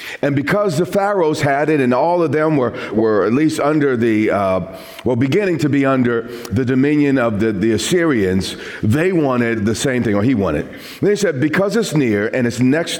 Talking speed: 210 wpm